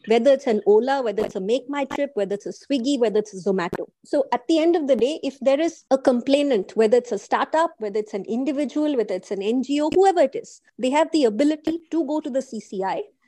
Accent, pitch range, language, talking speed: Indian, 235-310 Hz, English, 245 wpm